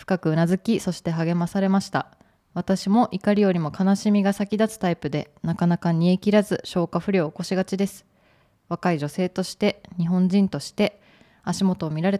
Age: 20-39